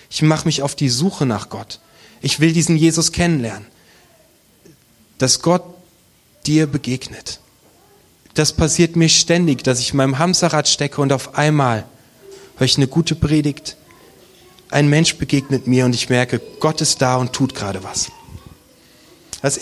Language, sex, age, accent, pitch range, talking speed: German, male, 30-49, German, 135-170 Hz, 155 wpm